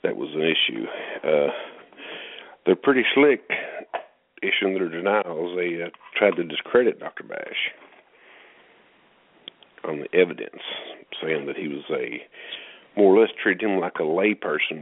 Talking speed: 140 wpm